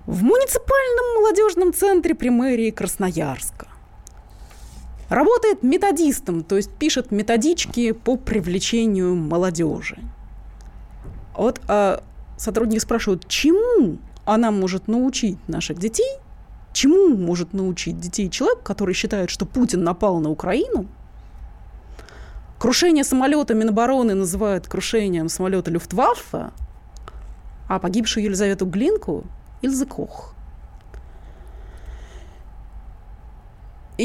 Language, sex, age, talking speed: Russian, female, 20-39, 90 wpm